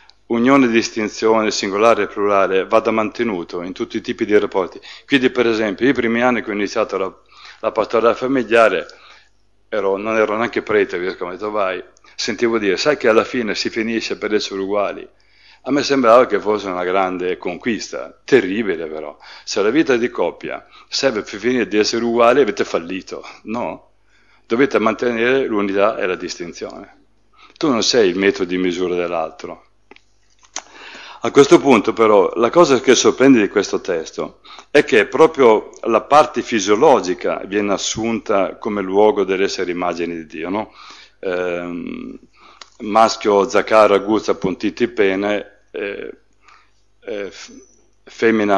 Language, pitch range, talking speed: Italian, 95-120 Hz, 145 wpm